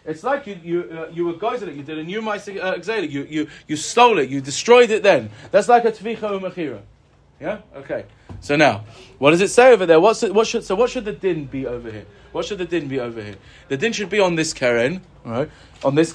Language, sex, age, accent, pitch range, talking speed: English, male, 20-39, British, 150-225 Hz, 250 wpm